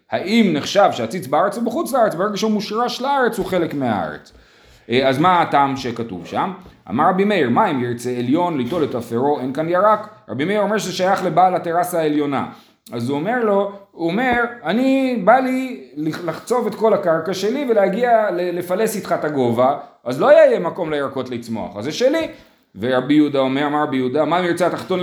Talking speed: 180 wpm